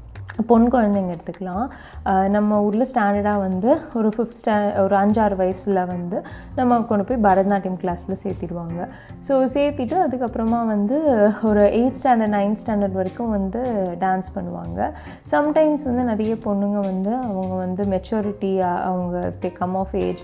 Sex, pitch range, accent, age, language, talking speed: female, 190-245 Hz, native, 20-39, Tamil, 135 wpm